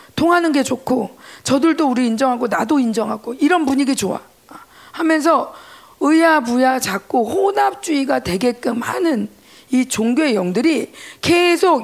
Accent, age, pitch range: native, 40-59, 255-350 Hz